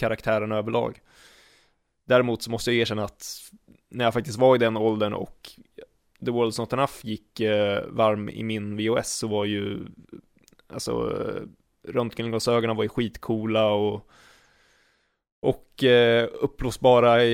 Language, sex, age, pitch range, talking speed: Swedish, male, 20-39, 110-125 Hz, 135 wpm